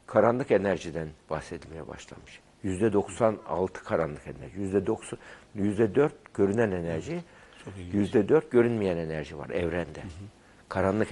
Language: Turkish